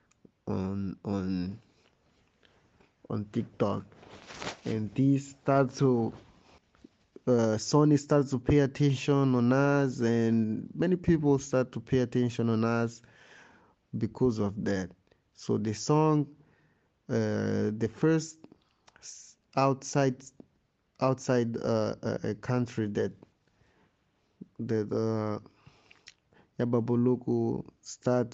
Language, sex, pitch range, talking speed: English, male, 110-130 Hz, 100 wpm